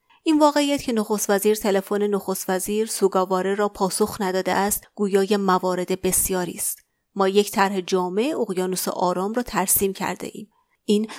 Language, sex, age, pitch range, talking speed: Persian, female, 30-49, 195-245 Hz, 150 wpm